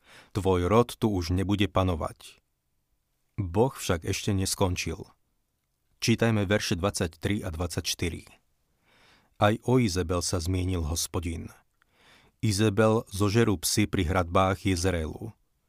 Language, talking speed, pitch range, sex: Slovak, 105 wpm, 90-105 Hz, male